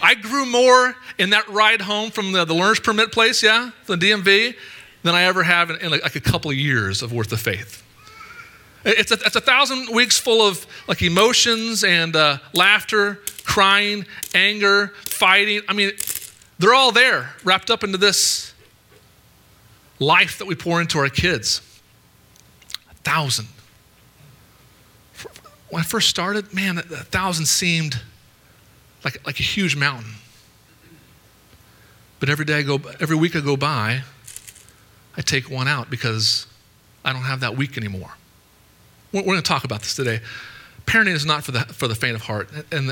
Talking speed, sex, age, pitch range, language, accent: 160 wpm, male, 40-59, 115-190 Hz, English, American